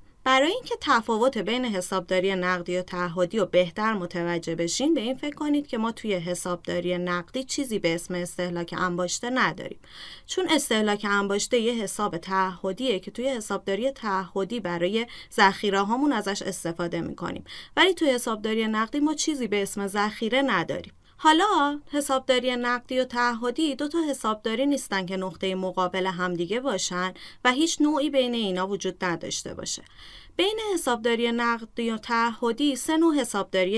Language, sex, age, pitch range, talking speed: Persian, female, 30-49, 190-270 Hz, 145 wpm